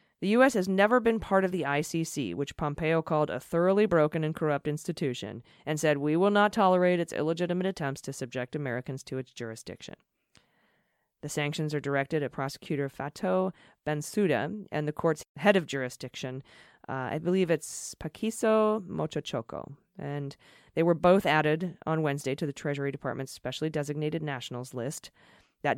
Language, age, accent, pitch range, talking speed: English, 30-49, American, 145-180 Hz, 160 wpm